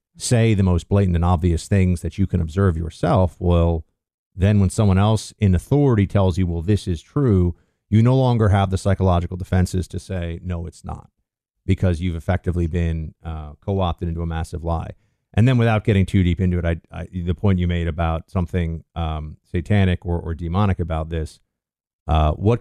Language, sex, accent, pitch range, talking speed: English, male, American, 85-105 Hz, 185 wpm